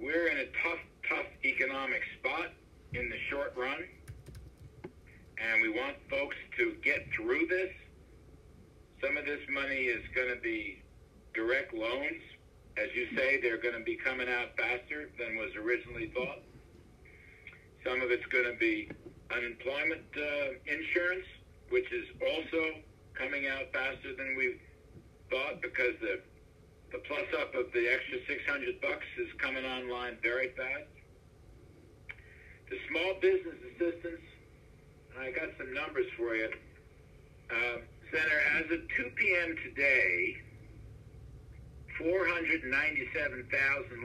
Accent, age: American, 60-79